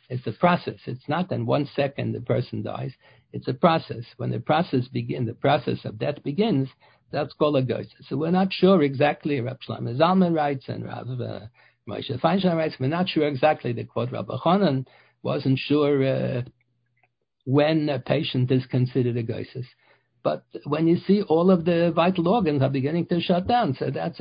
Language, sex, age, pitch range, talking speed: English, male, 60-79, 130-165 Hz, 185 wpm